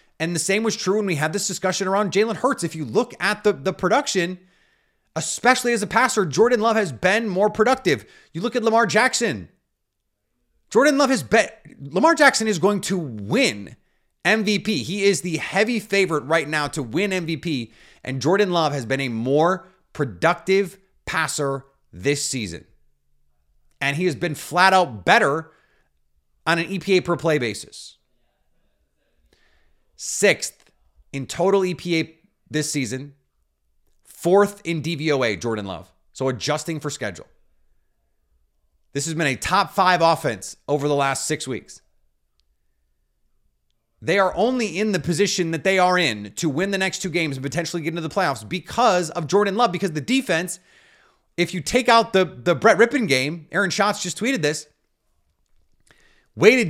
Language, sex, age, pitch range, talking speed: English, male, 30-49, 140-200 Hz, 160 wpm